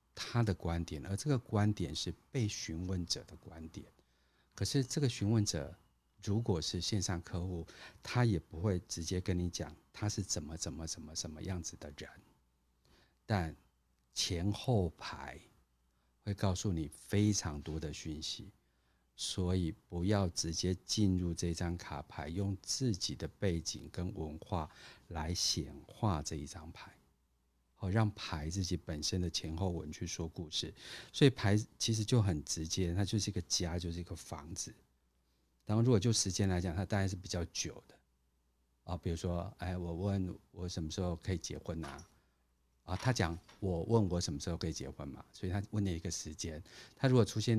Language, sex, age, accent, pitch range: Chinese, male, 50-69, native, 80-100 Hz